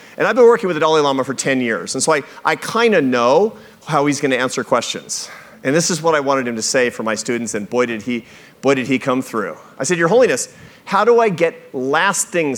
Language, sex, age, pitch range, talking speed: English, male, 40-59, 130-175 Hz, 245 wpm